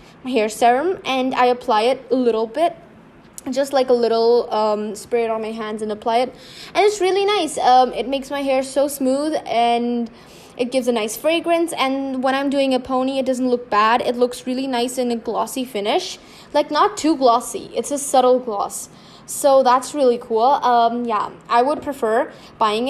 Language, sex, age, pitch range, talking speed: English, female, 10-29, 225-270 Hz, 195 wpm